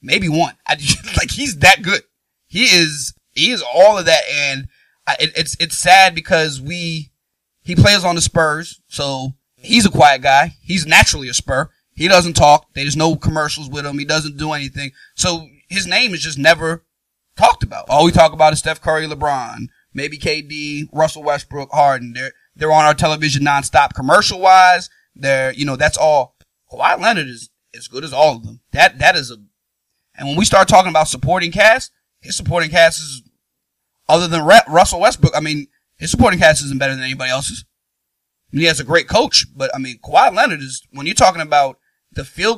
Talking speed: 200 wpm